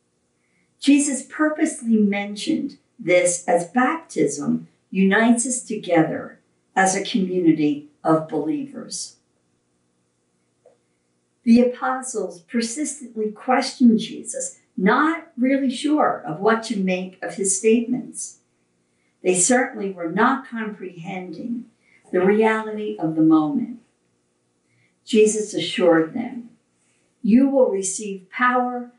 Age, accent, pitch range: 50-69, American, 160-245 Hz